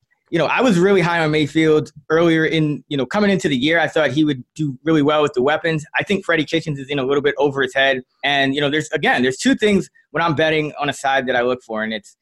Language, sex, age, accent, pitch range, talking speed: English, male, 20-39, American, 135-175 Hz, 285 wpm